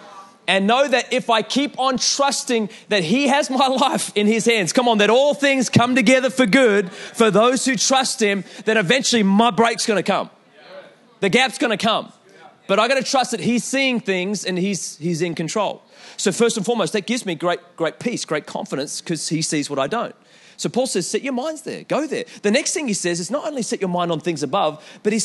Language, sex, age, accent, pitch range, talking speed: English, male, 30-49, Australian, 185-245 Hz, 235 wpm